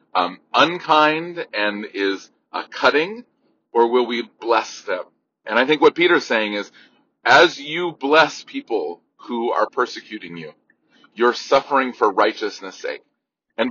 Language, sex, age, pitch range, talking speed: English, male, 40-59, 120-175 Hz, 140 wpm